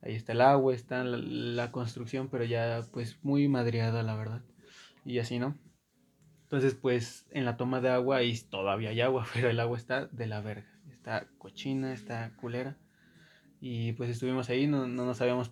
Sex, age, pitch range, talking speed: male, 20-39, 120-130 Hz, 180 wpm